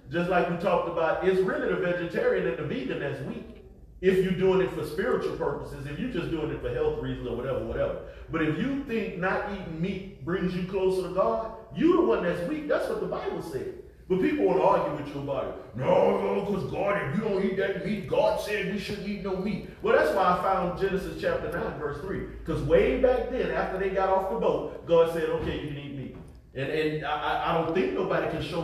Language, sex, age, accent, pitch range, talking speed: English, male, 40-59, American, 140-195 Hz, 235 wpm